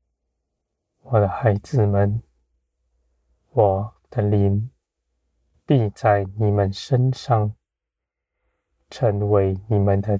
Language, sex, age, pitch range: Chinese, male, 20-39, 75-115 Hz